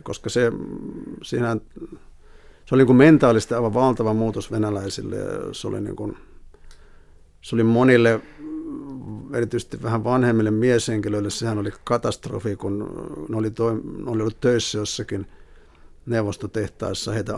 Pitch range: 100-115 Hz